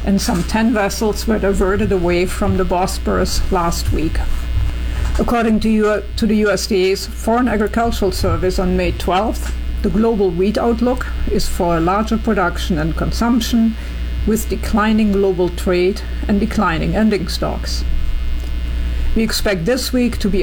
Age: 50-69